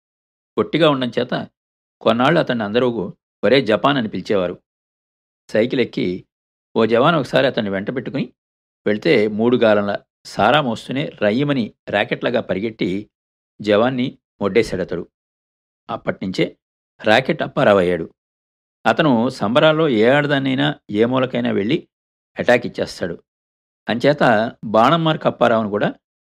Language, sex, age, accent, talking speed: Telugu, male, 50-69, native, 100 wpm